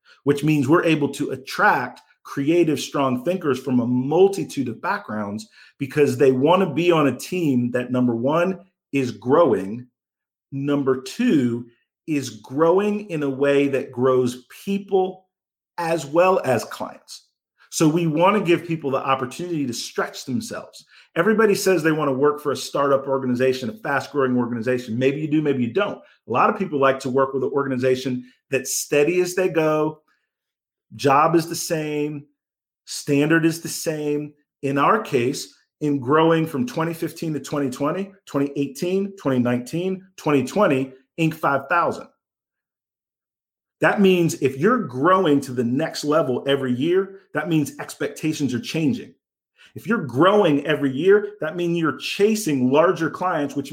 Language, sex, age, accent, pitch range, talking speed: English, male, 40-59, American, 135-170 Hz, 150 wpm